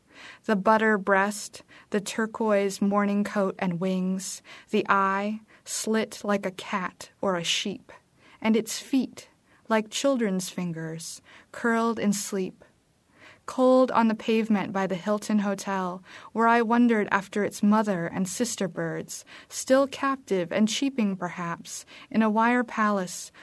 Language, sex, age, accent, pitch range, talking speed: English, female, 20-39, American, 190-220 Hz, 135 wpm